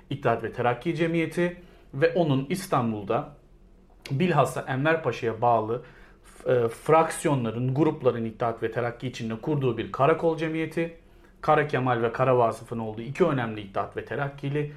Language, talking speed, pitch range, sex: Turkish, 135 wpm, 115-160 Hz, male